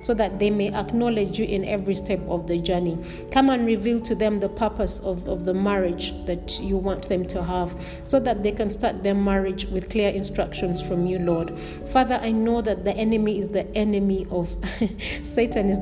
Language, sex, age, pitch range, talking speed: English, female, 30-49, 180-215 Hz, 205 wpm